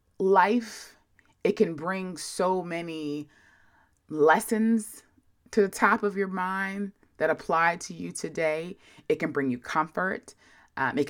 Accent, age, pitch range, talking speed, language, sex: American, 20-39, 140-180 Hz, 135 wpm, English, female